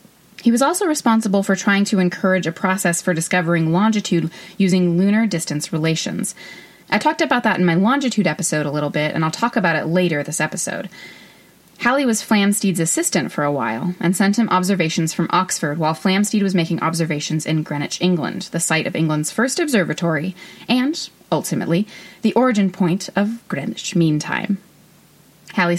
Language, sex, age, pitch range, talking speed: English, female, 30-49, 165-205 Hz, 170 wpm